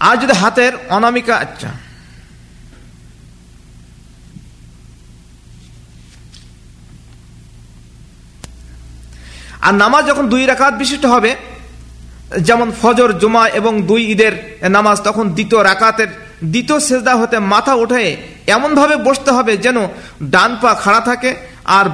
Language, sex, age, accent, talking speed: Bengali, male, 50-69, native, 65 wpm